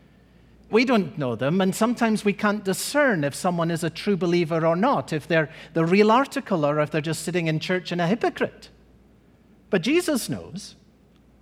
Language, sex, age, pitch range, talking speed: English, male, 50-69, 190-260 Hz, 185 wpm